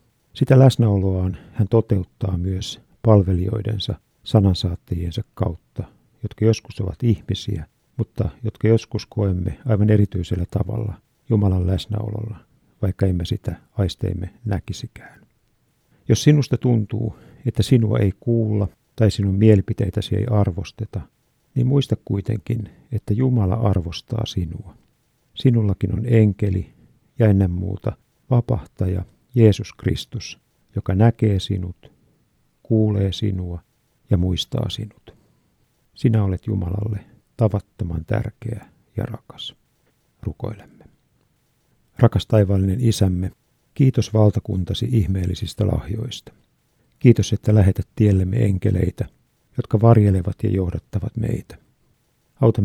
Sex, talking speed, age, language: male, 100 wpm, 50-69, Finnish